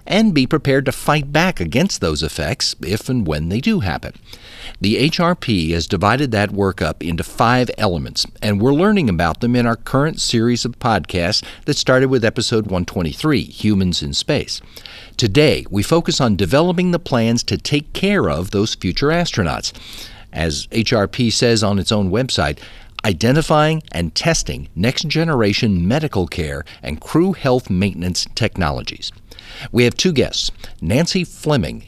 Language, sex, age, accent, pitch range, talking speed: English, male, 50-69, American, 90-130 Hz, 155 wpm